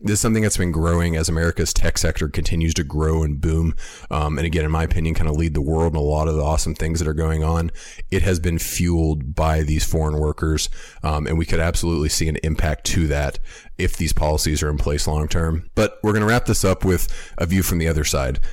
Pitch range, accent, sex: 75-90 Hz, American, male